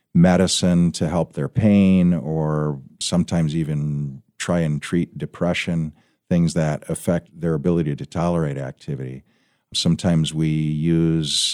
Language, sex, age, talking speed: English, male, 50-69, 120 wpm